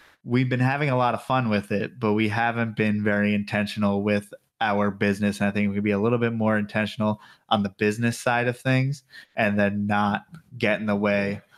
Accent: American